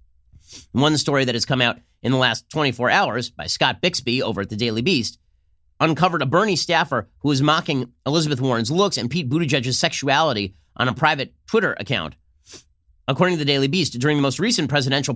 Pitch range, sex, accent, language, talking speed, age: 120-155 Hz, male, American, English, 190 wpm, 30-49